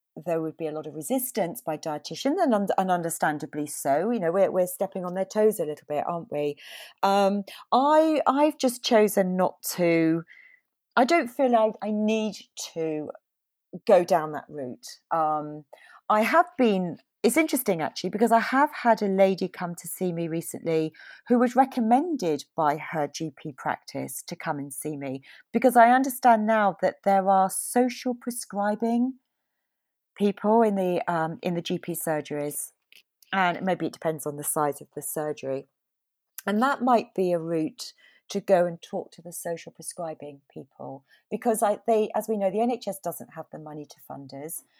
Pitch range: 160-220 Hz